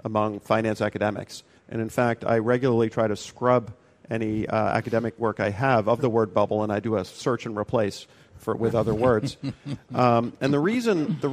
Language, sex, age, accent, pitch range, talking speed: English, male, 40-59, American, 110-130 Hz, 195 wpm